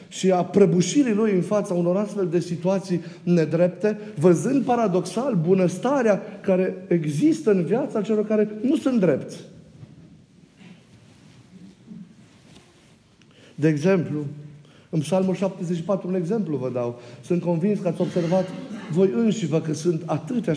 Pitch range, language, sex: 145-190 Hz, Romanian, male